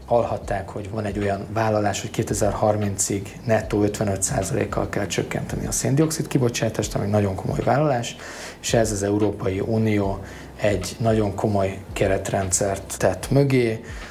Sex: male